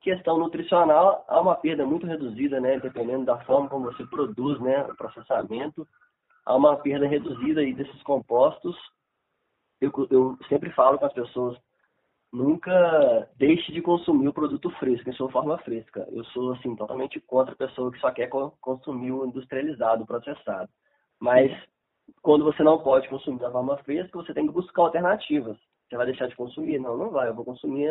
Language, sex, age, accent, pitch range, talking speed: Portuguese, male, 20-39, Brazilian, 130-155 Hz, 175 wpm